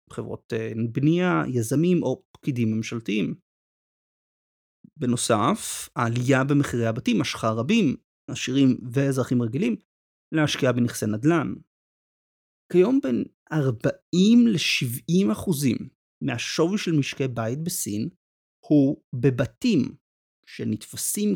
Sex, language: male, Hebrew